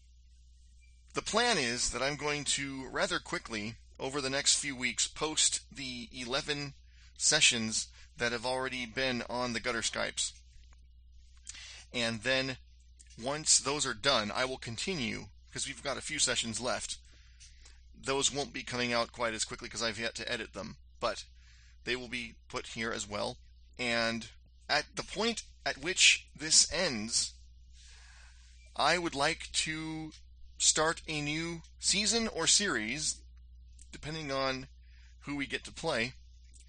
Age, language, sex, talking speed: 30-49, English, male, 145 wpm